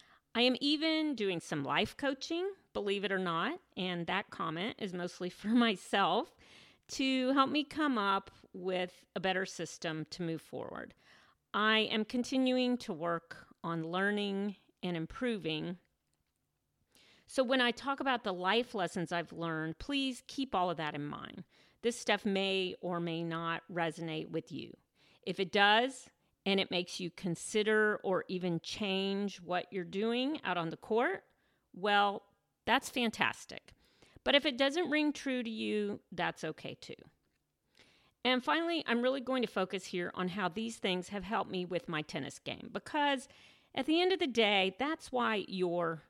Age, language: 40-59, English